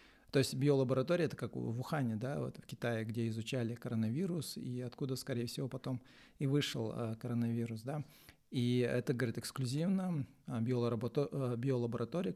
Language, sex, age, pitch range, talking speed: Russian, male, 40-59, 120-145 Hz, 135 wpm